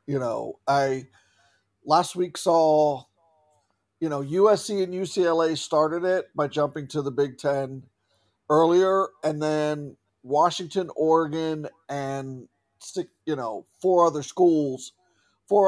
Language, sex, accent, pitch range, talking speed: English, male, American, 145-185 Hz, 120 wpm